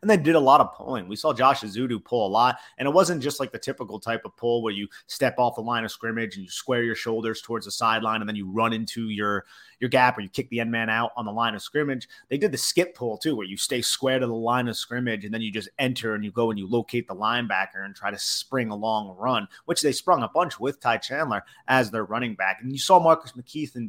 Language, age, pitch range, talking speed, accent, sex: English, 30-49, 105-130 Hz, 280 wpm, American, male